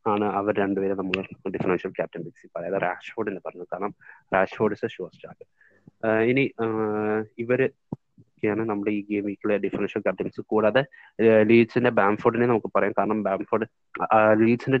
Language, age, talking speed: Malayalam, 20-39, 90 wpm